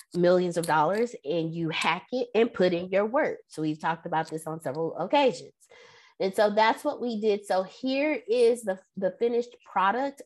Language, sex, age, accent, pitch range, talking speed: English, female, 20-39, American, 175-245 Hz, 195 wpm